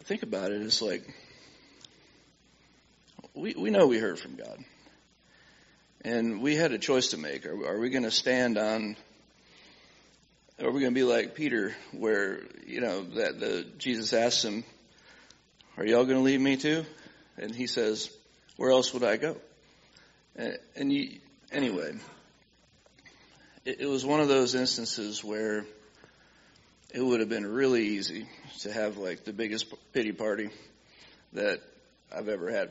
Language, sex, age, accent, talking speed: English, male, 40-59, American, 160 wpm